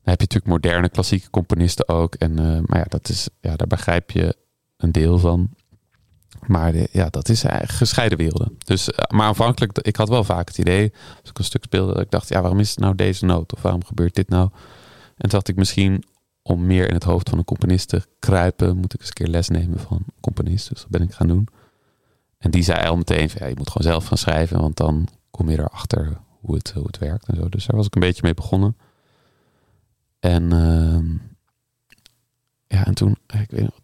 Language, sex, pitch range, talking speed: English, male, 85-110 Hz, 225 wpm